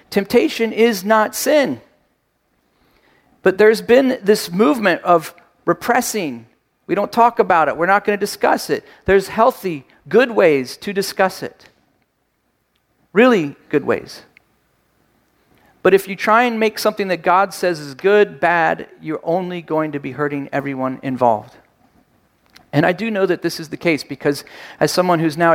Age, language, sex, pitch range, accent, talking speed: 40-59, English, male, 160-200 Hz, American, 155 wpm